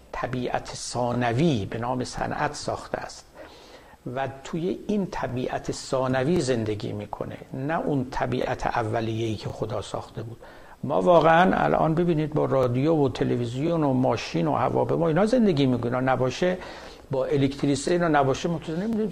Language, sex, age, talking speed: Persian, male, 60-79, 140 wpm